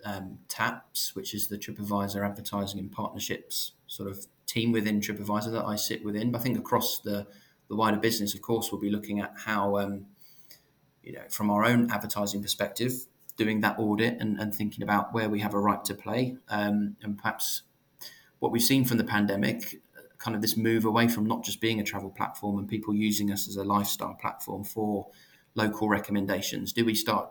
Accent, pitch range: British, 100-110 Hz